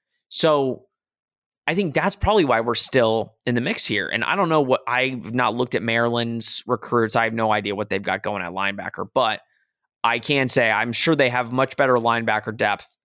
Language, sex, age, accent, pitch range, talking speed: English, male, 20-39, American, 110-135 Hz, 205 wpm